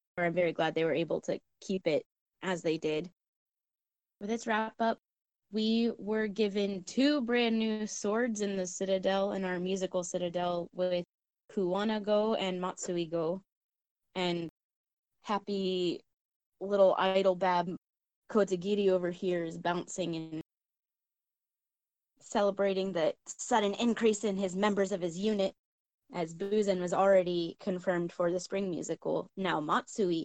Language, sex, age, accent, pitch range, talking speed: English, female, 20-39, American, 180-220 Hz, 130 wpm